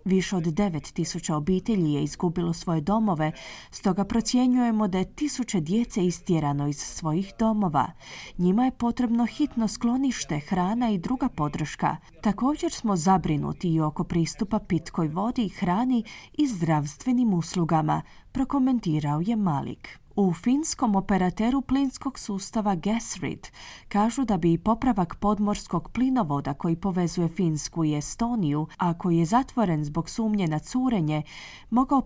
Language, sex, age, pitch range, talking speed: Croatian, female, 30-49, 170-235 Hz, 130 wpm